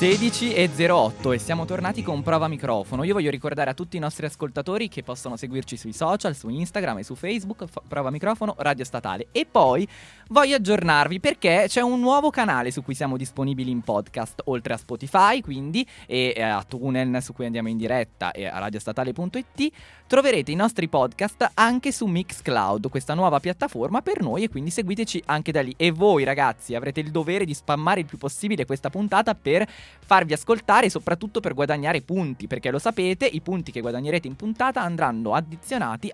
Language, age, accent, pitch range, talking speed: Italian, 20-39, native, 125-195 Hz, 185 wpm